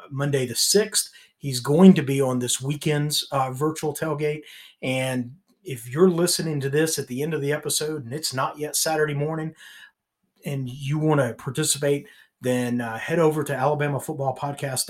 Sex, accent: male, American